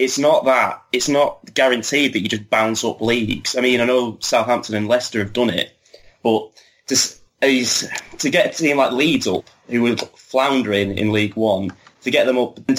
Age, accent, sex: 20-39, British, male